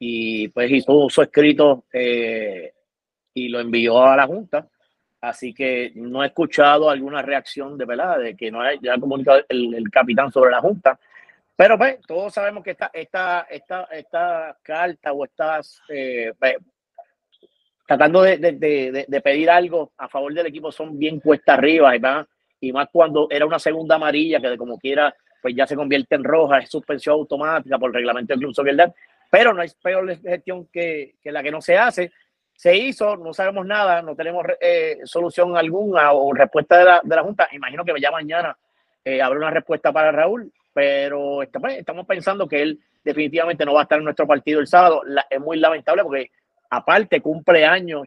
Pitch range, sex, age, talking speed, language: 135-175 Hz, male, 30-49, 185 wpm, Spanish